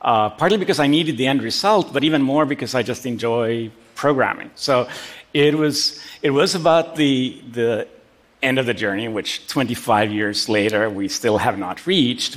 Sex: male